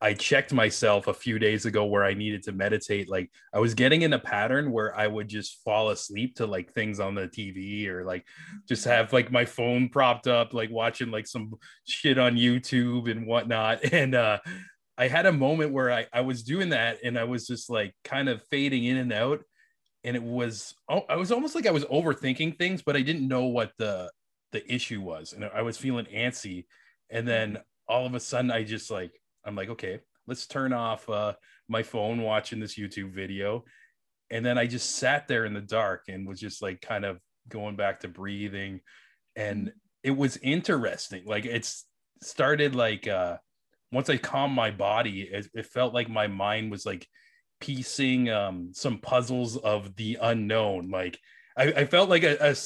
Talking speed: 200 wpm